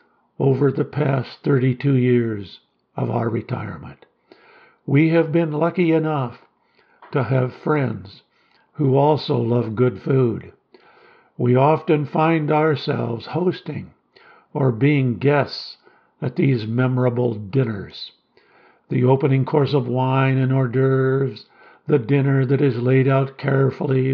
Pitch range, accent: 125-150 Hz, American